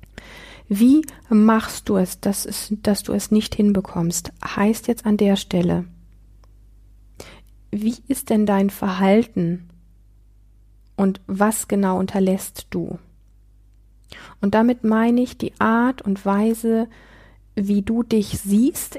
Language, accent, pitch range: German, German, 190-225 Hz